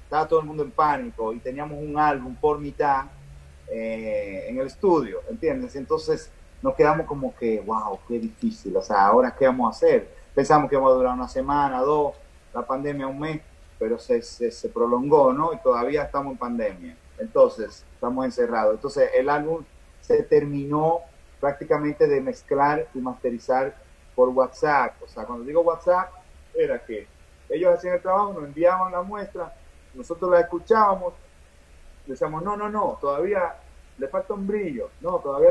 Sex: male